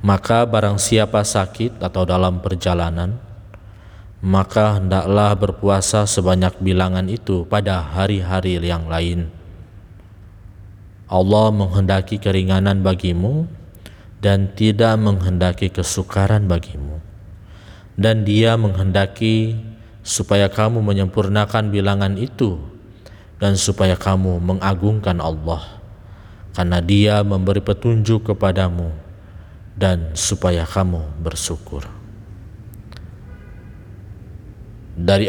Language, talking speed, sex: Indonesian, 85 wpm, male